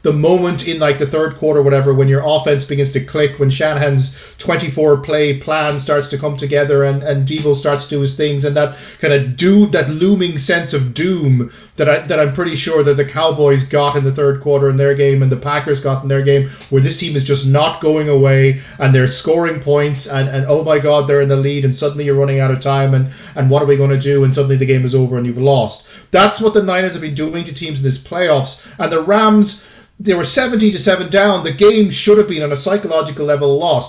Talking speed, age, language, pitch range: 250 wpm, 30-49, English, 140-170 Hz